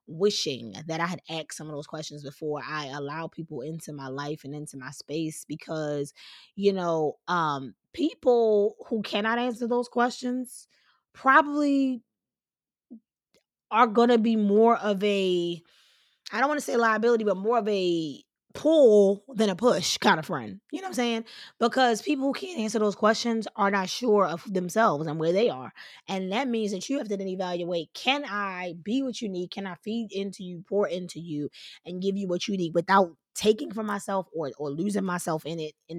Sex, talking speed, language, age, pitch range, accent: female, 195 wpm, English, 20-39, 170-235 Hz, American